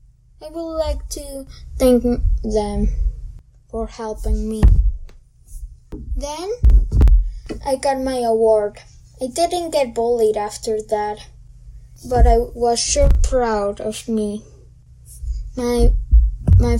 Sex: female